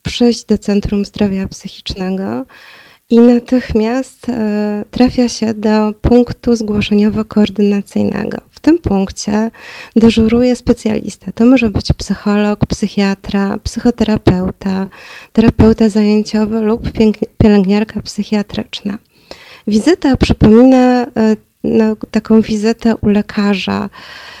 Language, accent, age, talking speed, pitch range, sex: Polish, native, 20-39, 90 wpm, 205-230 Hz, female